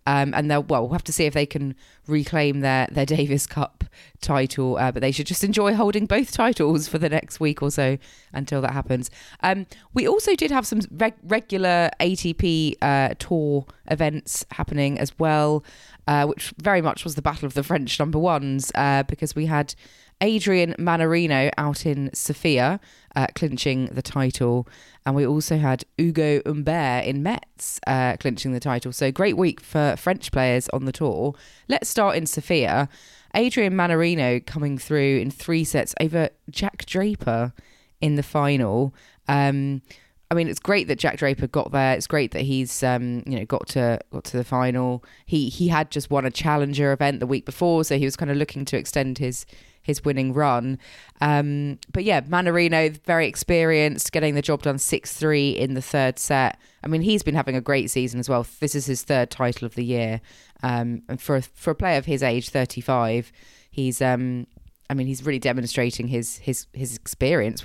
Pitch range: 130-155 Hz